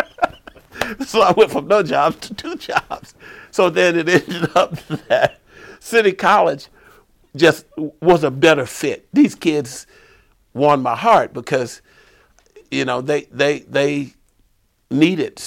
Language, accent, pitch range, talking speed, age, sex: English, American, 120-170 Hz, 130 wpm, 60-79, male